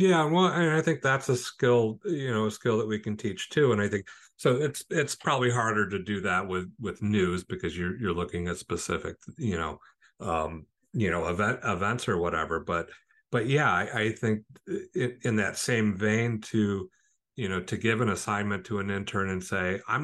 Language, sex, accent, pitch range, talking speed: English, male, American, 90-110 Hz, 210 wpm